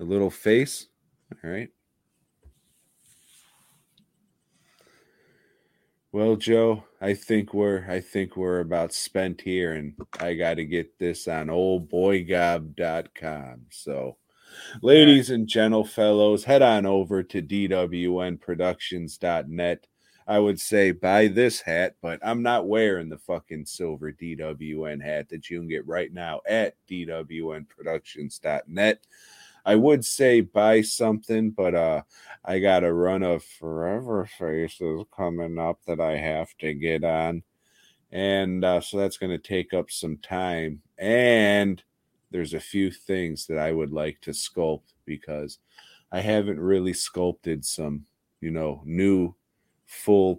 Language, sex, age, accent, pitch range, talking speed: English, male, 30-49, American, 80-100 Hz, 130 wpm